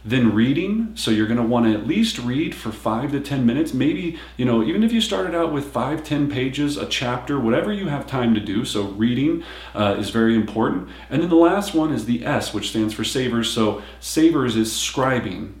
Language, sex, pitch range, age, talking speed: English, male, 105-140 Hz, 40-59, 215 wpm